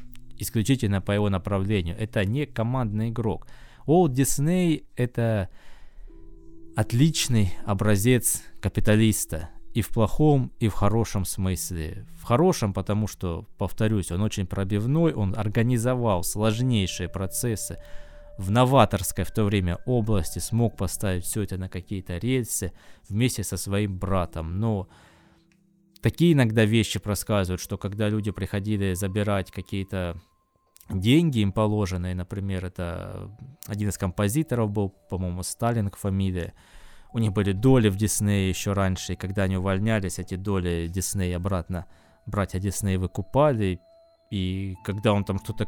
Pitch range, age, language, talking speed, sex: 95-110 Hz, 20-39, Russian, 130 wpm, male